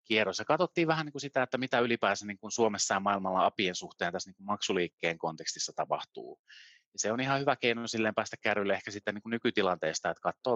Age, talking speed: 30-49, 190 wpm